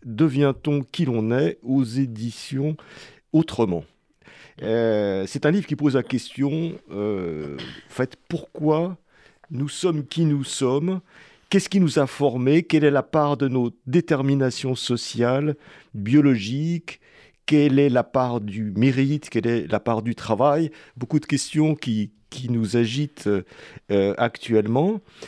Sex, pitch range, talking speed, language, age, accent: male, 115-160 Hz, 140 wpm, French, 50-69, French